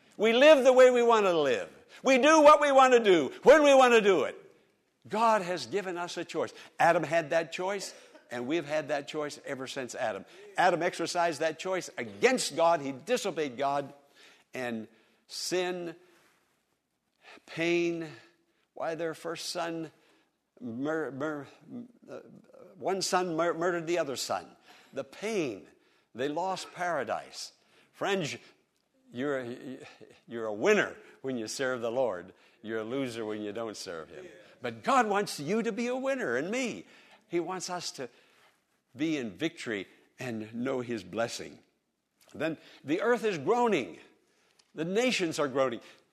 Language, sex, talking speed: English, male, 150 wpm